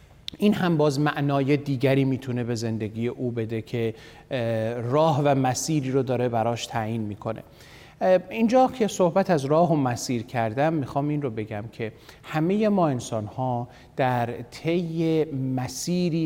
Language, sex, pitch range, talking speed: Persian, male, 120-150 Hz, 145 wpm